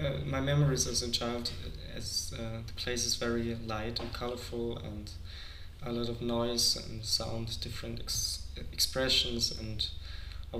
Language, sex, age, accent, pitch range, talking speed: English, male, 20-39, German, 105-120 Hz, 145 wpm